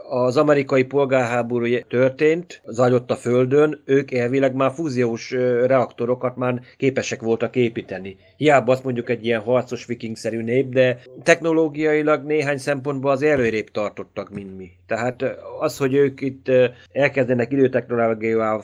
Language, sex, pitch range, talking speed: Hungarian, male, 120-140 Hz, 130 wpm